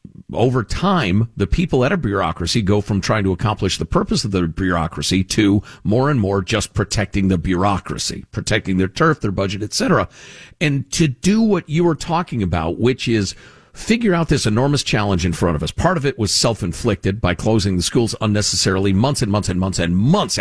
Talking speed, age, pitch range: 200 wpm, 50-69, 100-155 Hz